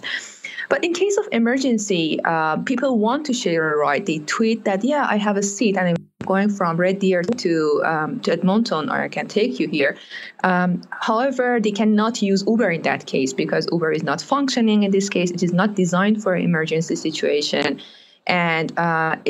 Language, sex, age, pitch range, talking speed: English, female, 20-39, 175-225 Hz, 195 wpm